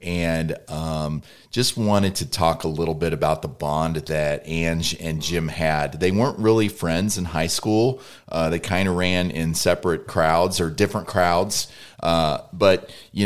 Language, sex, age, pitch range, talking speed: English, male, 30-49, 75-90 Hz, 170 wpm